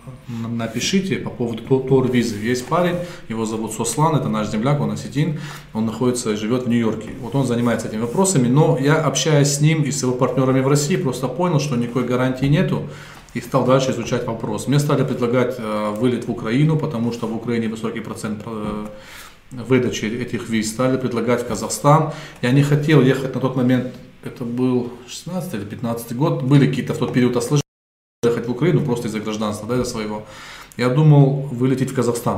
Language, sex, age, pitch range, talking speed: Russian, male, 20-39, 115-145 Hz, 190 wpm